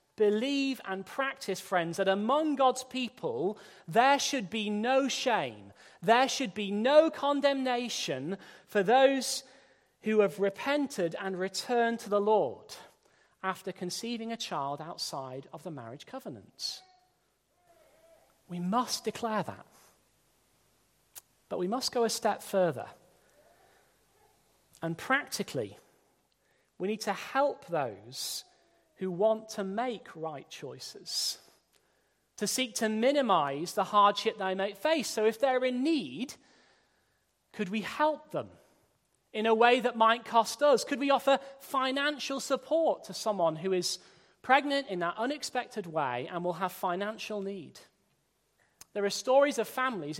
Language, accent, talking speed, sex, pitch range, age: English, British, 130 wpm, male, 190-265 Hz, 40-59